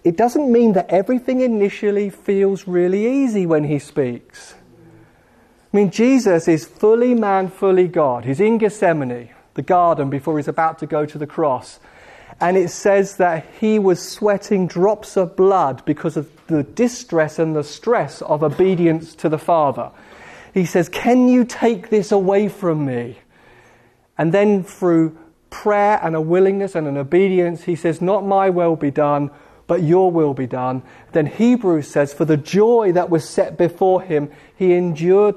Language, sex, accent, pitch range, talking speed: English, male, British, 150-195 Hz, 170 wpm